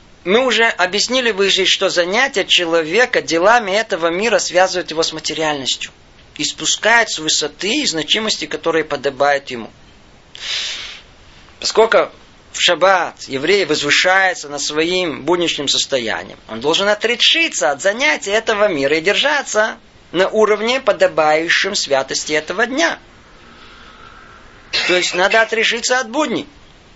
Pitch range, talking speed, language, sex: 155-230 Hz, 120 wpm, Russian, male